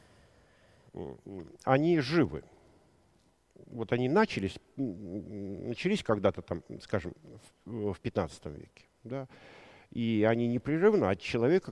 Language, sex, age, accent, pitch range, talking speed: Russian, male, 50-69, native, 100-130 Hz, 85 wpm